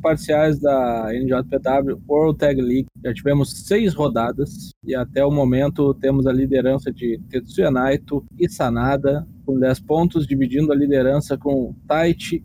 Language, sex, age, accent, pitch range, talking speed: Portuguese, male, 20-39, Brazilian, 130-160 Hz, 145 wpm